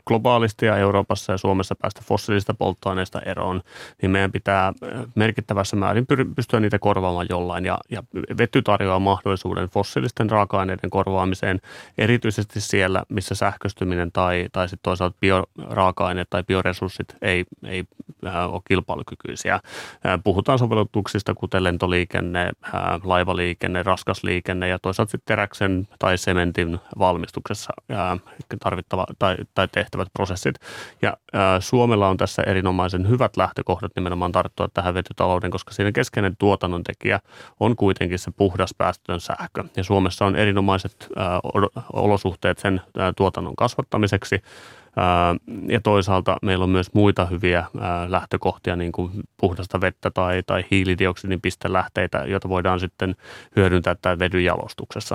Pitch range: 90-100 Hz